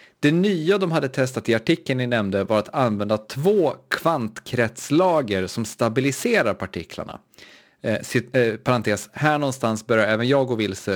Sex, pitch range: male, 110-145 Hz